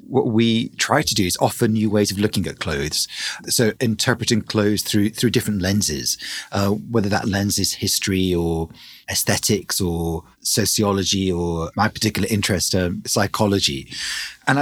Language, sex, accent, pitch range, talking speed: English, male, British, 100-120 Hz, 150 wpm